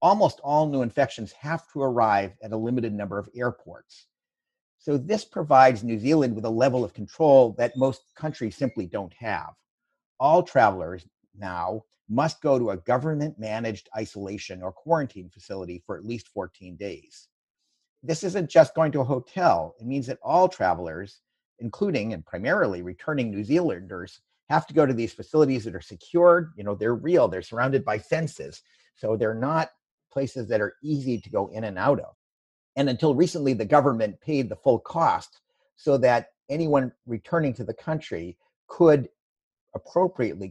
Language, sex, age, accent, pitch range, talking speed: English, male, 50-69, American, 105-150 Hz, 165 wpm